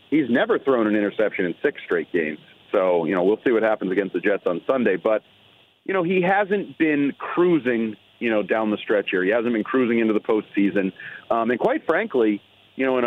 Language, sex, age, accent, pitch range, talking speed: English, male, 40-59, American, 110-145 Hz, 215 wpm